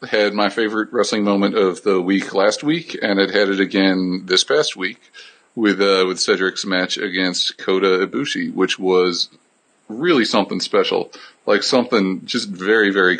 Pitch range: 95-110 Hz